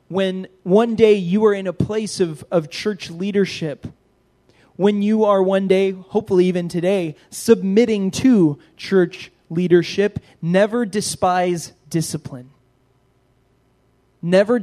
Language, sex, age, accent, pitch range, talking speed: English, male, 20-39, American, 155-195 Hz, 115 wpm